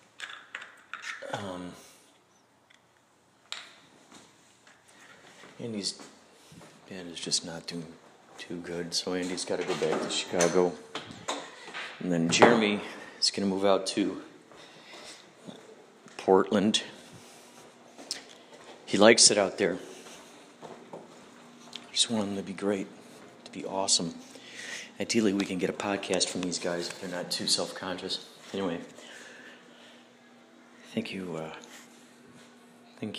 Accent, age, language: American, 40-59, English